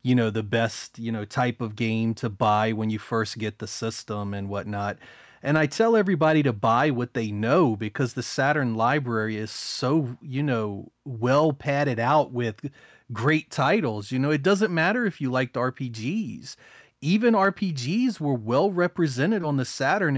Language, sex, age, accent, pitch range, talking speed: English, male, 30-49, American, 125-170 Hz, 175 wpm